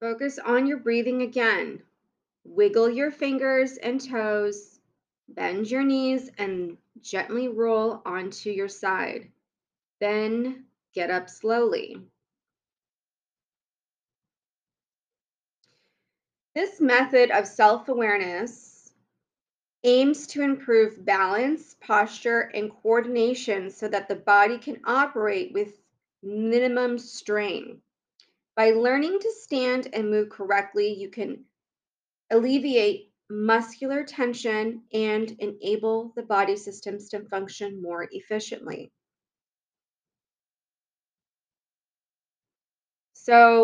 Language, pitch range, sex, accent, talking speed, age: English, 210-255 Hz, female, American, 90 wpm, 30-49